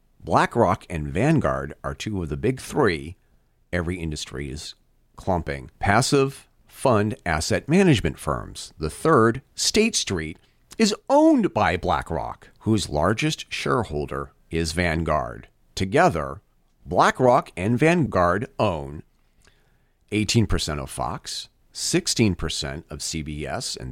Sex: male